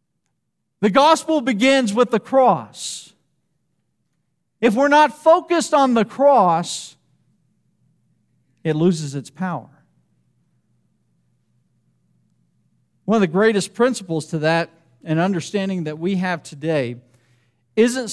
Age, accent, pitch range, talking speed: 50-69, American, 125-195 Hz, 105 wpm